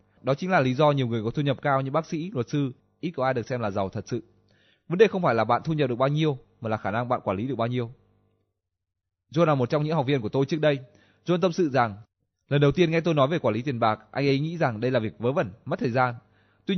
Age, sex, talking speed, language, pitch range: 20-39, male, 305 wpm, Vietnamese, 110-150 Hz